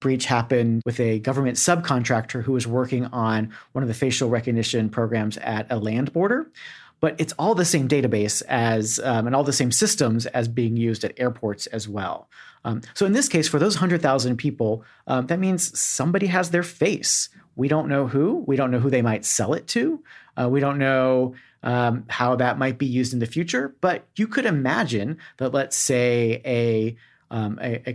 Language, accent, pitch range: English, American, 115-145 Hz